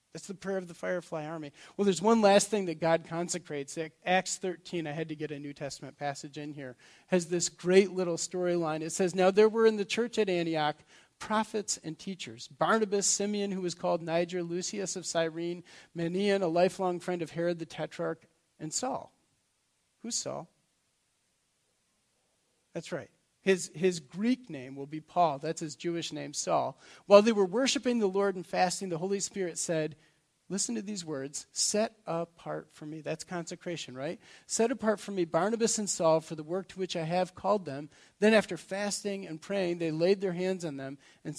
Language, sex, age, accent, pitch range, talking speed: English, male, 40-59, American, 160-195 Hz, 190 wpm